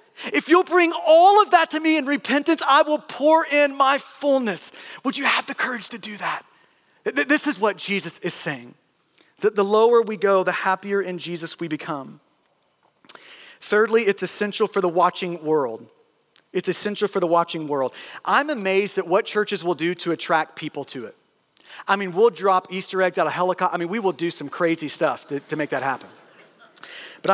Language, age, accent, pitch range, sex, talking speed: English, 40-59, American, 160-210 Hz, male, 195 wpm